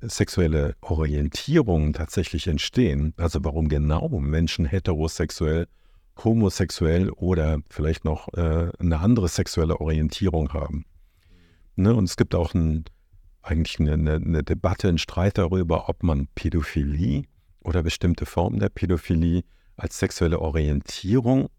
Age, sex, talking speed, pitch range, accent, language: 50-69, male, 115 wpm, 80-95 Hz, German, German